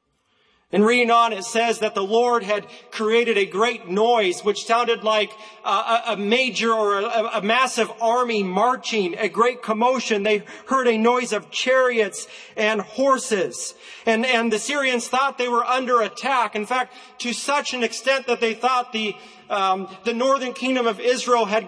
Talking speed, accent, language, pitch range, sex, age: 170 wpm, American, English, 190-230 Hz, male, 40-59